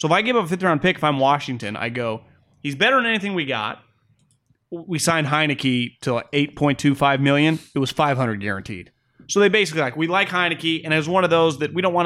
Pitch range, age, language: 125-165 Hz, 30-49, English